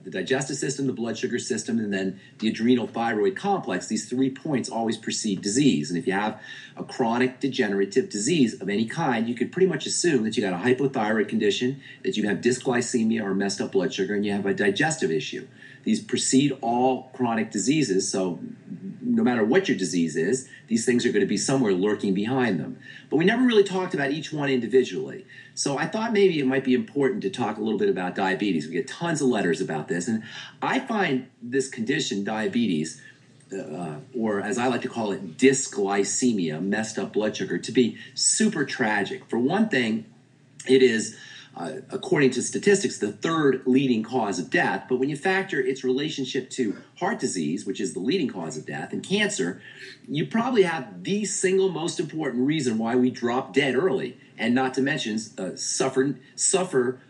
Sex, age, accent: male, 40-59, American